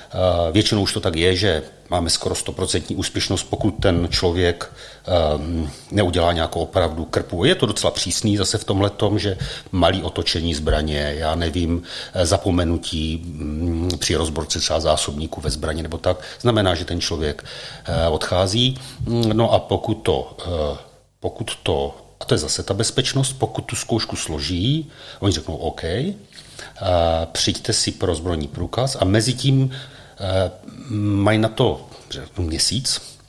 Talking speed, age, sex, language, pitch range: 140 wpm, 40-59, male, Czech, 85-110 Hz